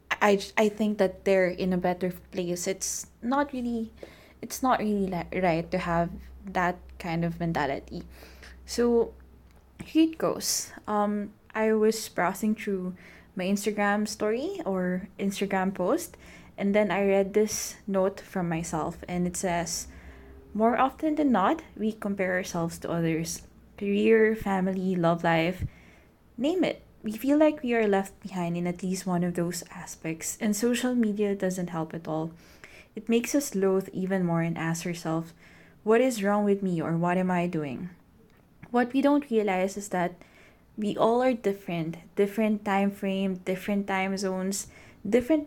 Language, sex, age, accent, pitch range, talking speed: English, female, 20-39, Filipino, 175-215 Hz, 160 wpm